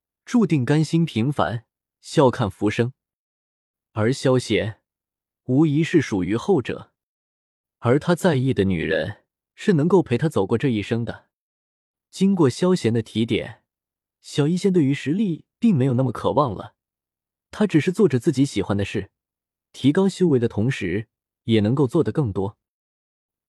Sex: male